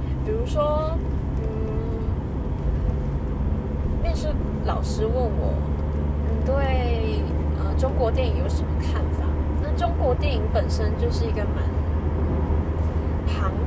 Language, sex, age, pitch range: Chinese, female, 10-29, 75-85 Hz